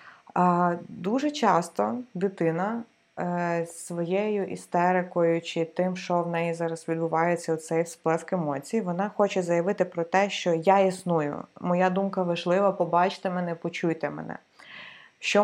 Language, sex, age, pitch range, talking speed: Ukrainian, female, 20-39, 160-185 Hz, 120 wpm